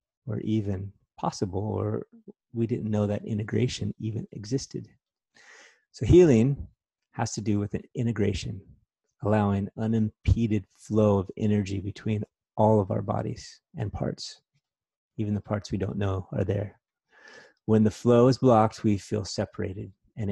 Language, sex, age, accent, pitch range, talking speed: English, male, 30-49, American, 100-115 Hz, 140 wpm